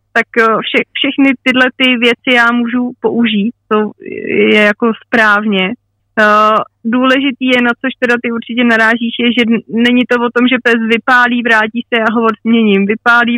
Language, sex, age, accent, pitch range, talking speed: Czech, female, 30-49, native, 215-245 Hz, 170 wpm